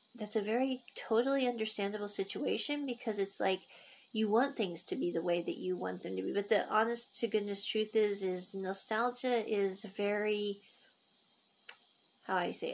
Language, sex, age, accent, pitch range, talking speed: English, female, 40-59, American, 200-245 Hz, 170 wpm